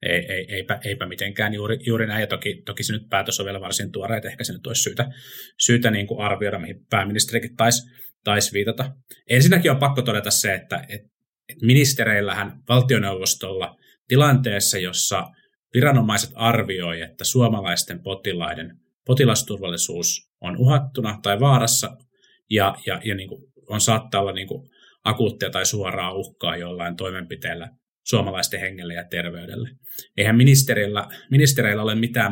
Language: Finnish